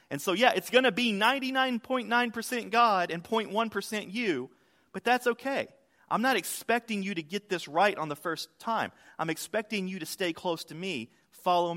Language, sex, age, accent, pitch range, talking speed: English, male, 40-59, American, 145-205 Hz, 185 wpm